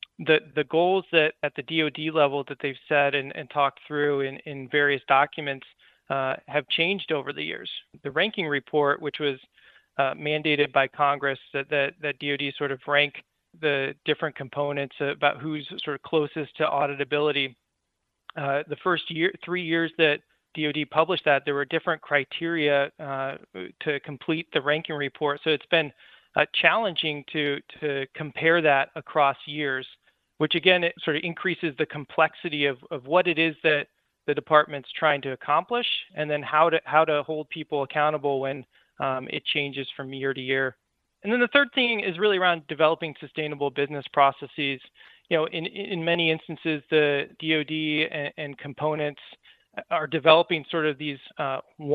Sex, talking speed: male, 170 wpm